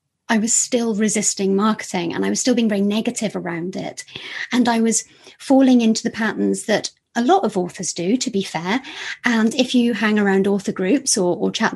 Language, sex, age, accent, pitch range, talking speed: English, female, 30-49, British, 190-220 Hz, 205 wpm